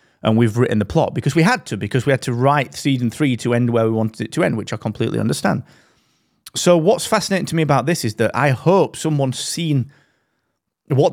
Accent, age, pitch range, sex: British, 30-49, 110-150 Hz, male